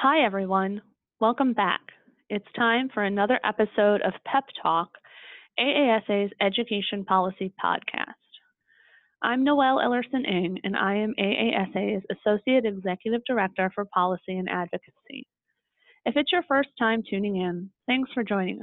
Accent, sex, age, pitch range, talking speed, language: American, female, 30-49, 195-250 Hz, 130 wpm, English